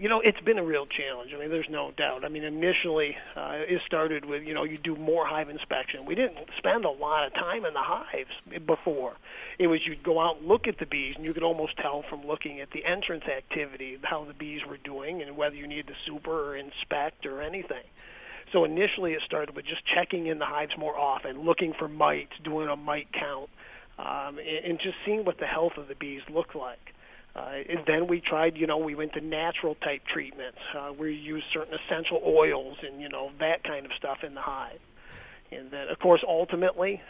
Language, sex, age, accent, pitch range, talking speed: English, male, 40-59, American, 150-170 Hz, 225 wpm